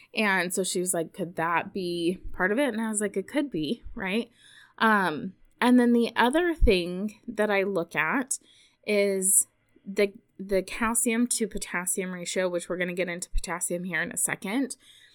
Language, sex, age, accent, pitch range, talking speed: English, female, 20-39, American, 180-230 Hz, 185 wpm